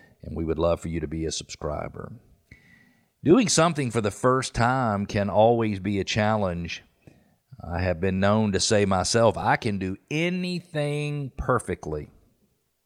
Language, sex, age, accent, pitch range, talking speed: English, male, 50-69, American, 85-110 Hz, 155 wpm